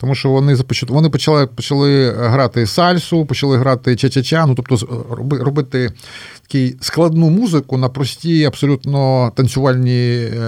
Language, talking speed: Ukrainian, 115 wpm